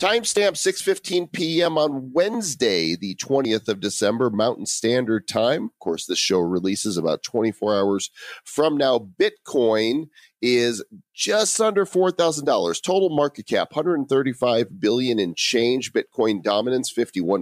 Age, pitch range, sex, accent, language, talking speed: 40-59, 110-180 Hz, male, American, English, 125 wpm